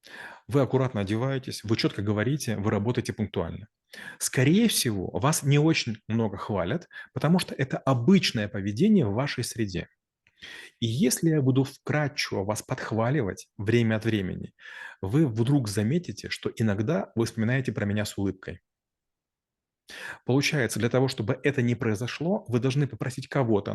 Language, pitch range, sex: Russian, 105-135 Hz, male